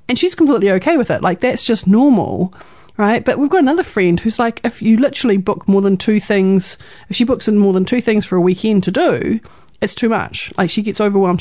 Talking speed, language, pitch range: 240 wpm, English, 180-225 Hz